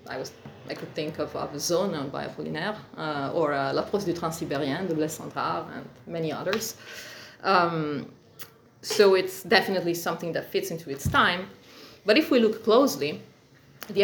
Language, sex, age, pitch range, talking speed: Portuguese, female, 20-39, 160-205 Hz, 165 wpm